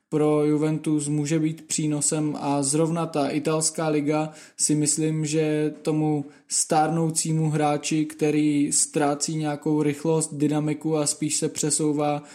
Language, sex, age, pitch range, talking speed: Czech, male, 20-39, 150-160 Hz, 120 wpm